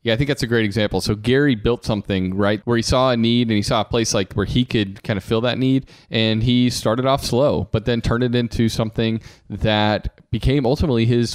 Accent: American